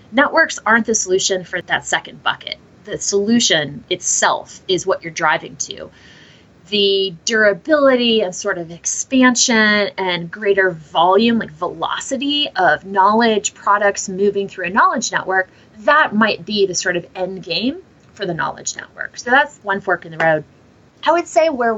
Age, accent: 20-39, American